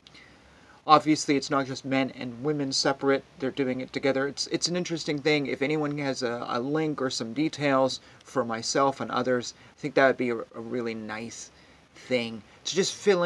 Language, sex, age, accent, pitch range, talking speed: English, male, 30-49, American, 115-145 Hz, 195 wpm